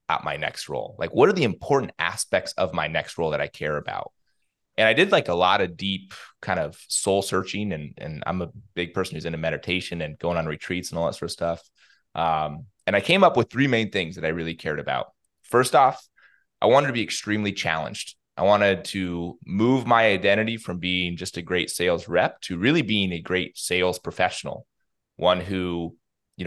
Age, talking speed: 20-39, 210 wpm